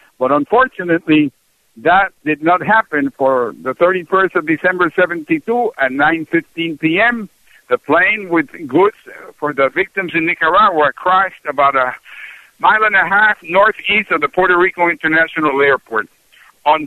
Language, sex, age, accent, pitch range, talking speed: English, male, 60-79, American, 150-195 Hz, 140 wpm